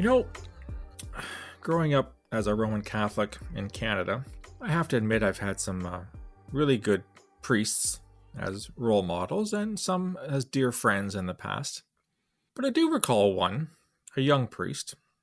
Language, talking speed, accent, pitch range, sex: English, 160 wpm, American, 100-160 Hz, male